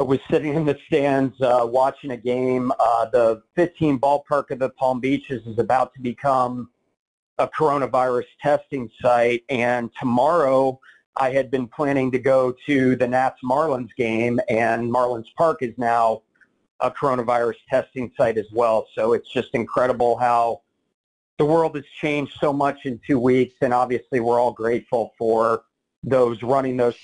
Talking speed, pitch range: 160 wpm, 125-145 Hz